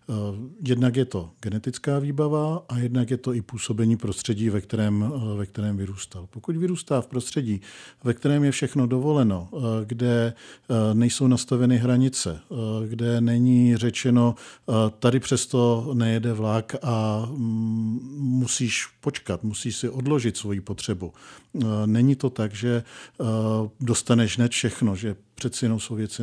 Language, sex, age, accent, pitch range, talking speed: Czech, male, 50-69, native, 110-135 Hz, 130 wpm